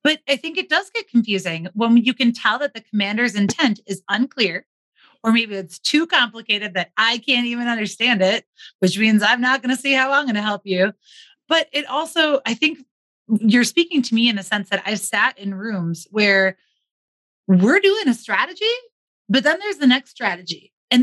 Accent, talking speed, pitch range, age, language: American, 205 wpm, 200-270 Hz, 30-49, English